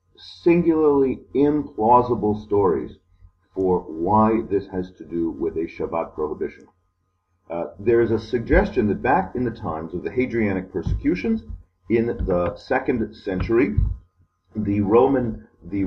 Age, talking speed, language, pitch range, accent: 40-59, 130 wpm, English, 90-120 Hz, American